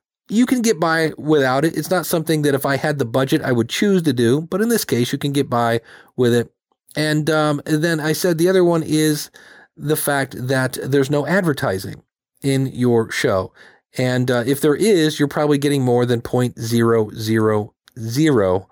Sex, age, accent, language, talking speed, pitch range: male, 40-59, American, English, 195 wpm, 120-155 Hz